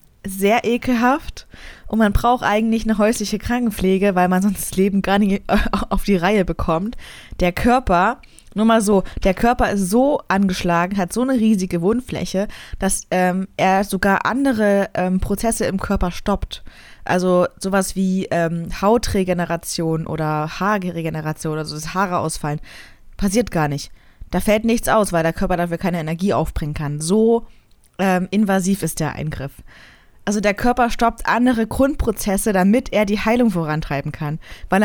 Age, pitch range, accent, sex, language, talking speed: 20-39, 175-230 Hz, German, female, German, 155 wpm